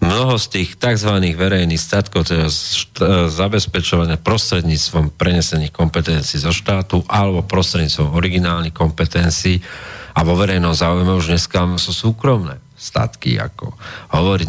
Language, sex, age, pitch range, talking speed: Slovak, male, 40-59, 80-100 Hz, 125 wpm